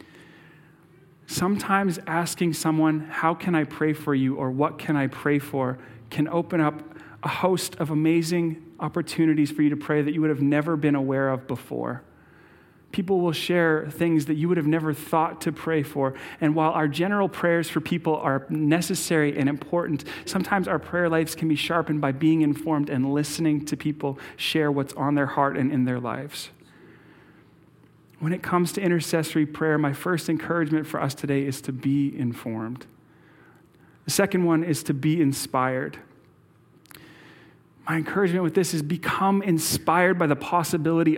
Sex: male